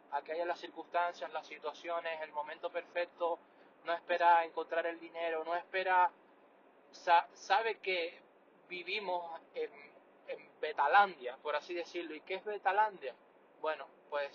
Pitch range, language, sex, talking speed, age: 150-180 Hz, Spanish, male, 135 wpm, 20-39